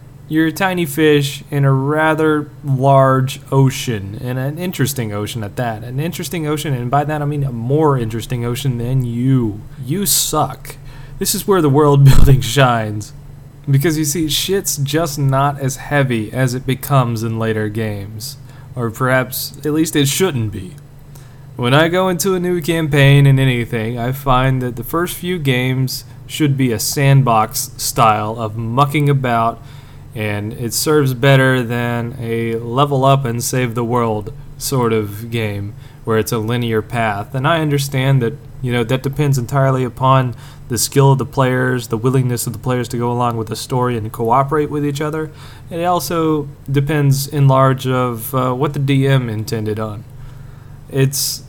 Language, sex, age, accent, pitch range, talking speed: English, male, 20-39, American, 120-145 Hz, 170 wpm